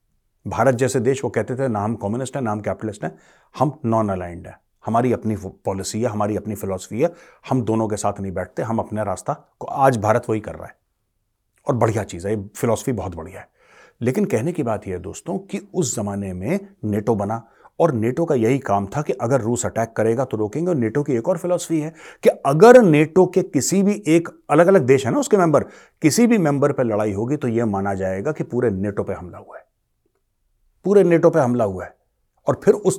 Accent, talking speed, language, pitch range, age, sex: native, 225 wpm, Hindi, 105-155 Hz, 30-49, male